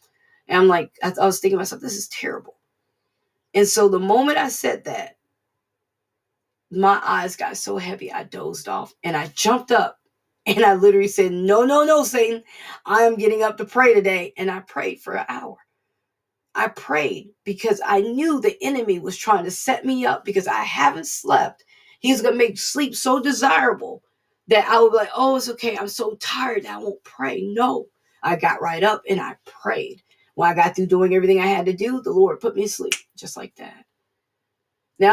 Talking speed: 200 wpm